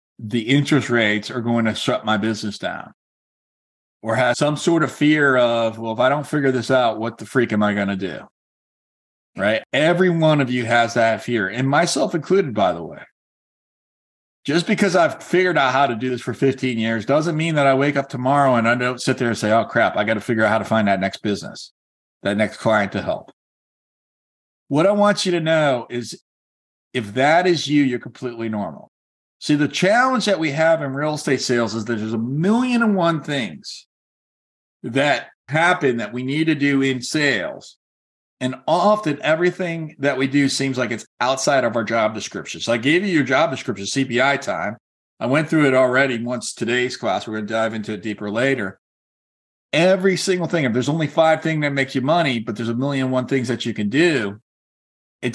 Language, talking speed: English, 210 wpm